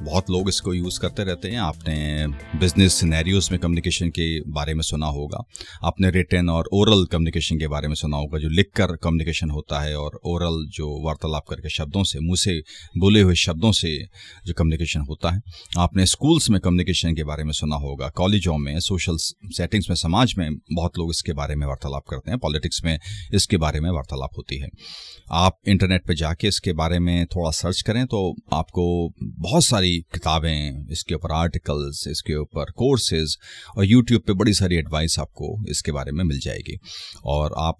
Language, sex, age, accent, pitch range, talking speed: Hindi, male, 30-49, native, 80-95 Hz, 185 wpm